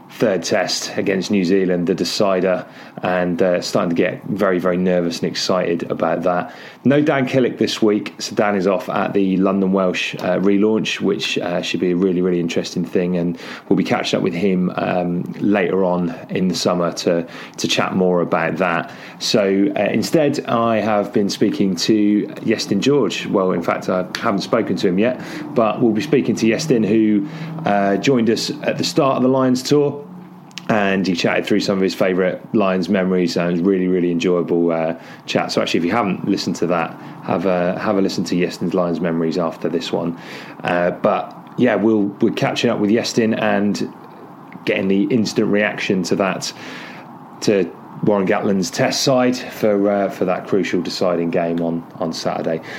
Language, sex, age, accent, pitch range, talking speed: English, male, 30-49, British, 90-110 Hz, 190 wpm